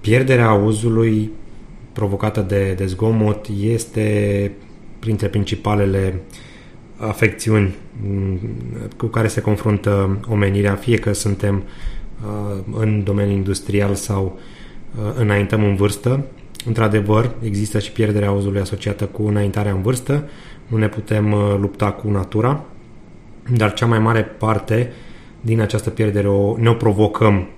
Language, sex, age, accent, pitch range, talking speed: Romanian, male, 30-49, native, 100-115 Hz, 115 wpm